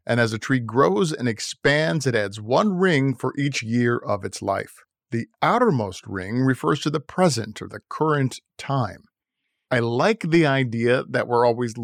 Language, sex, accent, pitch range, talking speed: English, male, American, 115-145 Hz, 180 wpm